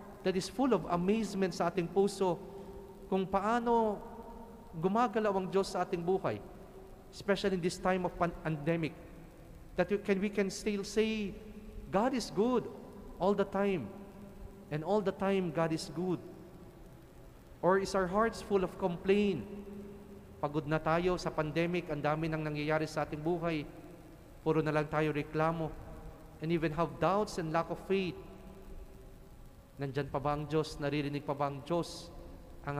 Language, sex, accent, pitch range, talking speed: English, male, Filipino, 155-190 Hz, 150 wpm